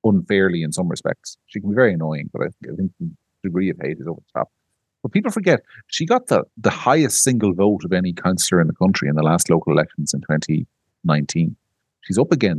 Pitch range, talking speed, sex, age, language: 95-125 Hz, 225 wpm, male, 40-59, English